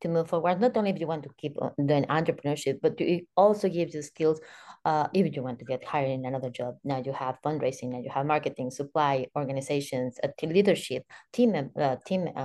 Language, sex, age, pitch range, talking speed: English, female, 30-49, 140-180 Hz, 210 wpm